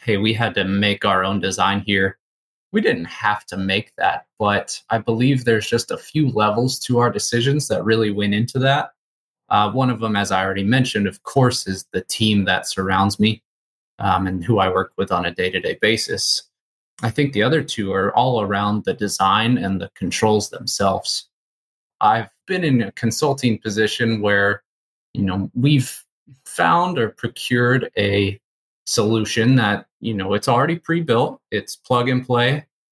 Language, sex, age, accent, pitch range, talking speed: English, male, 20-39, American, 100-130 Hz, 175 wpm